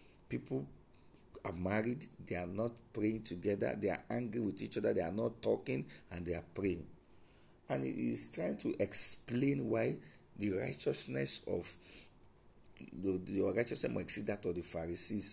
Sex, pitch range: male, 85-110 Hz